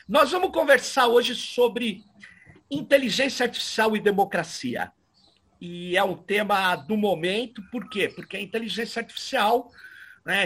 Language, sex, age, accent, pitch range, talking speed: Portuguese, male, 50-69, Brazilian, 180-250 Hz, 125 wpm